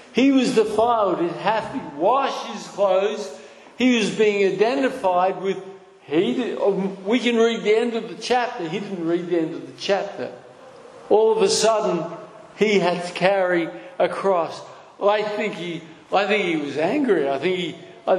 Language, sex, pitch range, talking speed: English, male, 170-240 Hz, 180 wpm